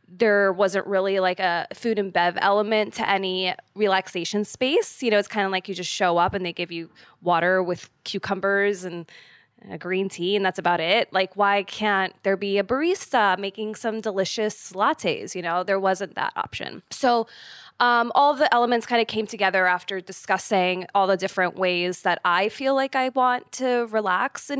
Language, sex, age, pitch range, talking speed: English, female, 20-39, 180-220 Hz, 195 wpm